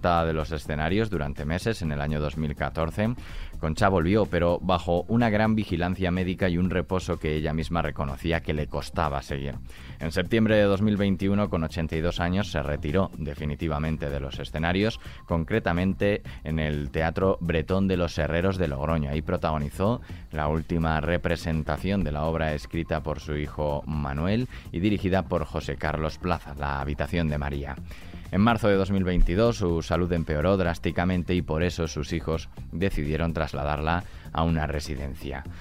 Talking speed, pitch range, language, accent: 155 wpm, 75-95 Hz, Spanish, Spanish